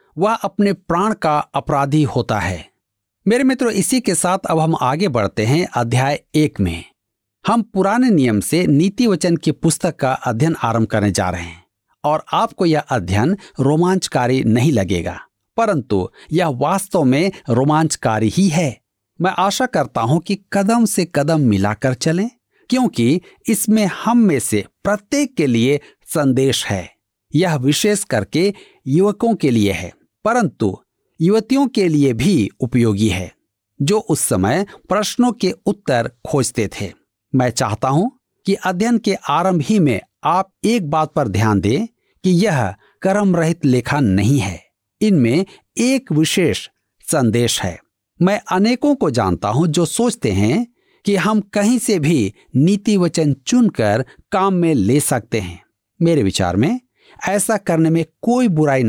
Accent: native